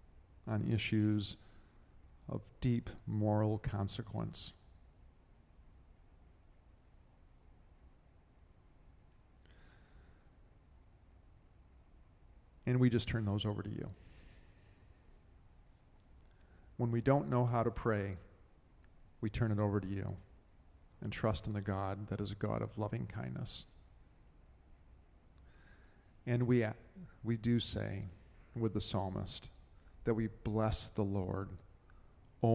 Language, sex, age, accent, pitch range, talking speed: English, male, 50-69, American, 85-110 Hz, 100 wpm